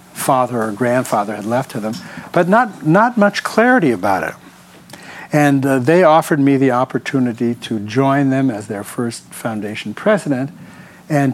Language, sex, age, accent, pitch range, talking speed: English, male, 60-79, American, 120-155 Hz, 160 wpm